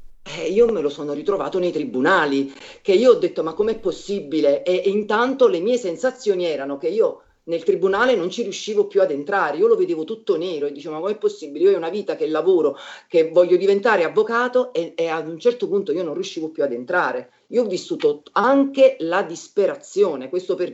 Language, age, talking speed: Italian, 40-59, 210 wpm